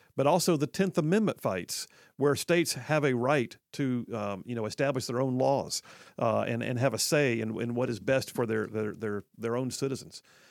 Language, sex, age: English, male, 50-69